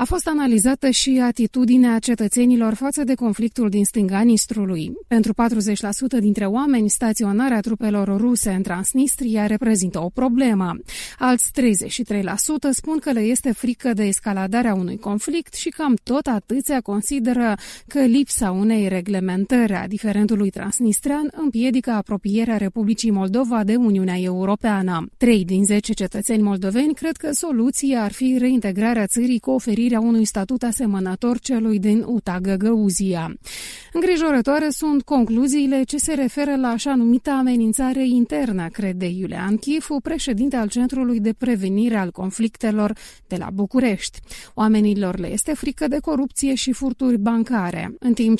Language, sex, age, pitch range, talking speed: Romanian, female, 30-49, 205-255 Hz, 135 wpm